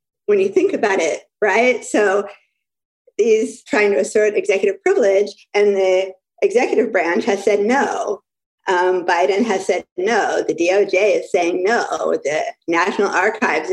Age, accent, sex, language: 50-69, American, female, English